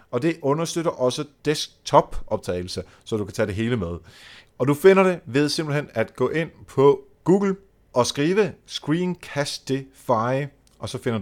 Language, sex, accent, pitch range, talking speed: Danish, male, native, 115-170 Hz, 160 wpm